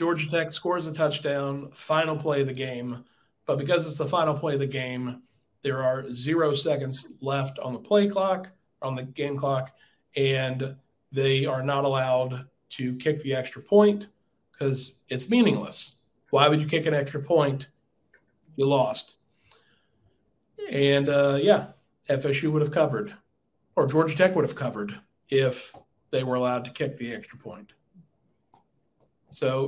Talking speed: 155 wpm